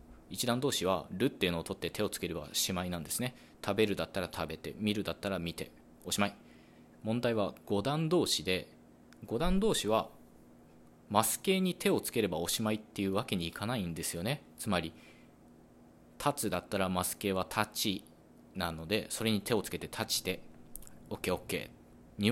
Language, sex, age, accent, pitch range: Japanese, male, 20-39, native, 80-105 Hz